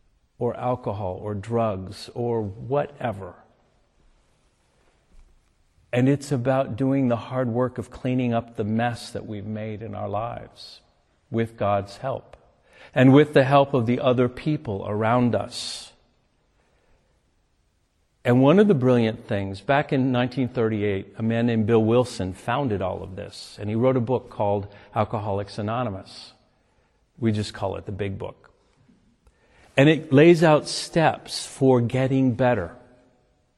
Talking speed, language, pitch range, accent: 140 wpm, English, 105-130 Hz, American